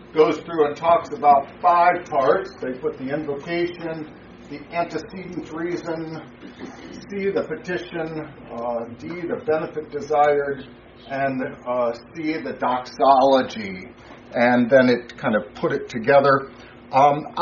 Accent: American